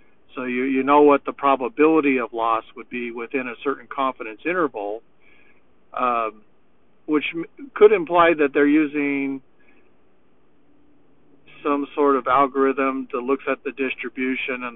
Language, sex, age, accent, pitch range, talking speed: English, male, 50-69, American, 125-145 Hz, 135 wpm